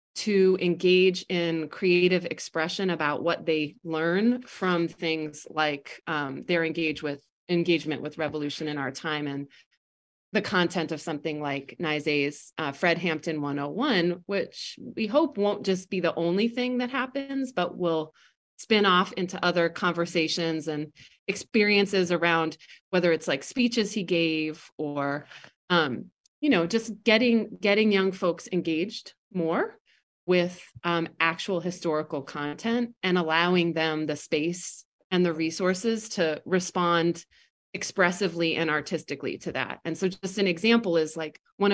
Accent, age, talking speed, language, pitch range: American, 30-49, 140 wpm, English, 160-195 Hz